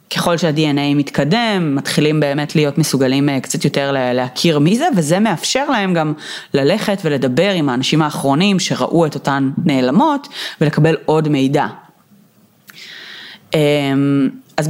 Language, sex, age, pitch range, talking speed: Hebrew, female, 30-49, 145-190 Hz, 120 wpm